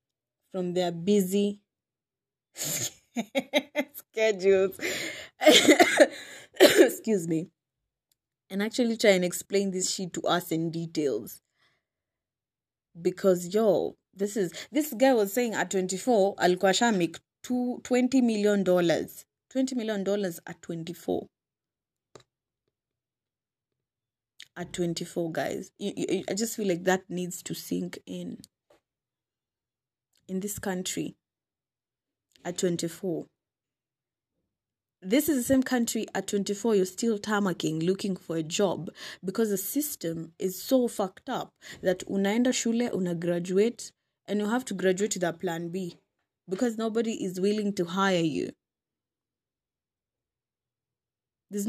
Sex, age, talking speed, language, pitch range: female, 20-39, 110 wpm, English, 170-220 Hz